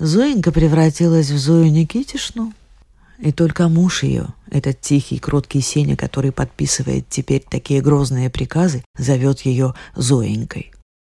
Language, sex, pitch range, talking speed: Russian, female, 130-170 Hz, 120 wpm